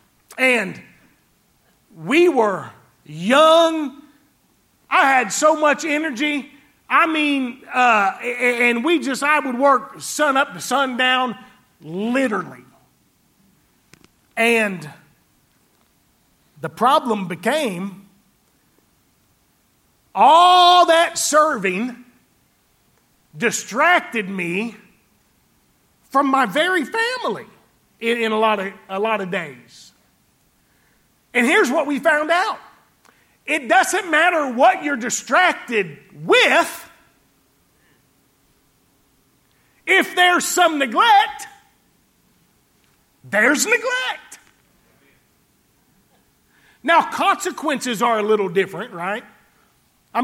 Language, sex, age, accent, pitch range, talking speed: English, male, 40-59, American, 220-310 Hz, 85 wpm